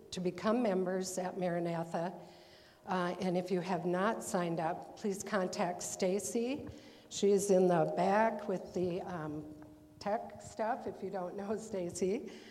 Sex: female